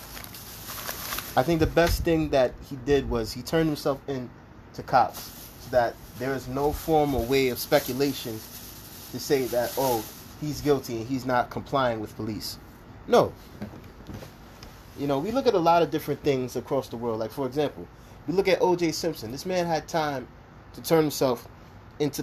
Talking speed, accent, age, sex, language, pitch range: 180 wpm, American, 30-49, male, English, 115-150 Hz